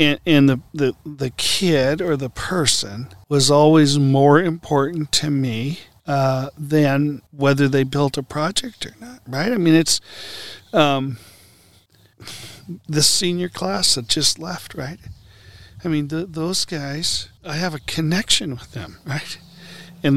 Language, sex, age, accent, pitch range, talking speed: English, male, 50-69, American, 100-155 Hz, 140 wpm